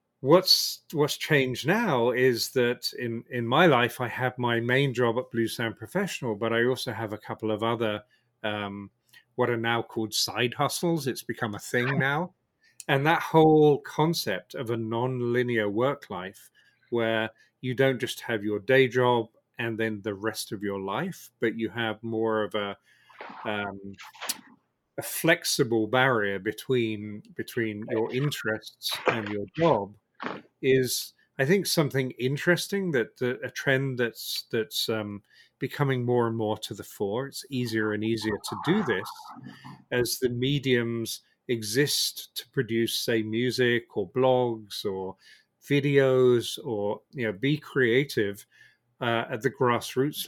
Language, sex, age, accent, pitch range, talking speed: English, male, 40-59, British, 110-135 Hz, 150 wpm